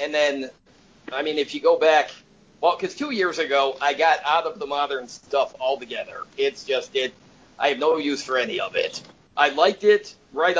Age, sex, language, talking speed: 40-59, male, English, 205 wpm